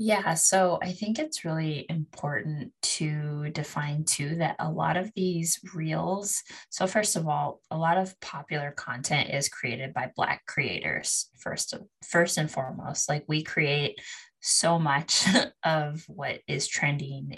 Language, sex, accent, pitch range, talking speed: English, female, American, 145-175 Hz, 150 wpm